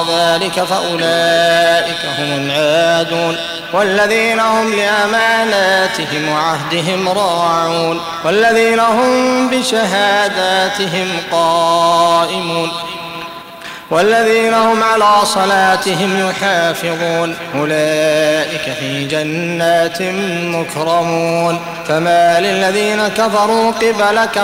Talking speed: 60 wpm